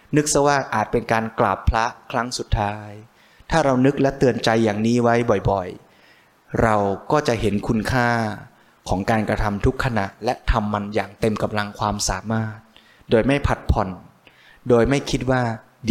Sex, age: male, 20-39